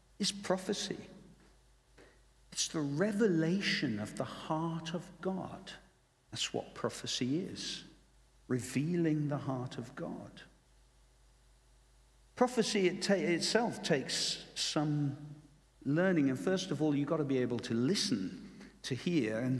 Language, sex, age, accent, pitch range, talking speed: English, male, 50-69, British, 120-165 Hz, 115 wpm